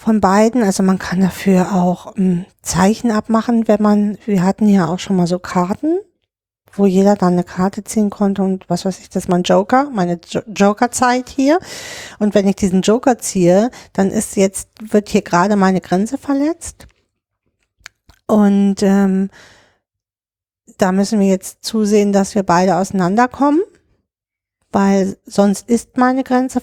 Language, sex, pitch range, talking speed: German, female, 190-225 Hz, 155 wpm